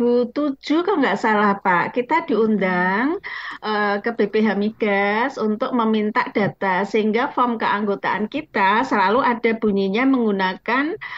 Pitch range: 200-245 Hz